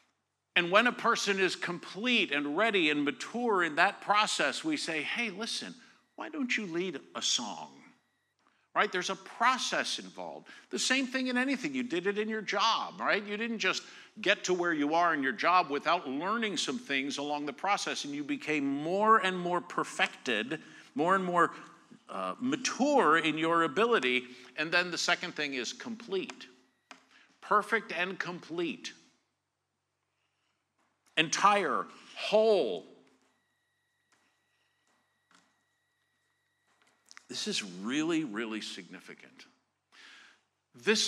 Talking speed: 135 wpm